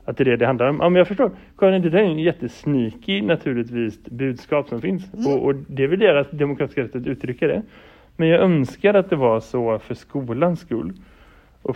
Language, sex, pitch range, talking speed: Swedish, male, 120-150 Hz, 215 wpm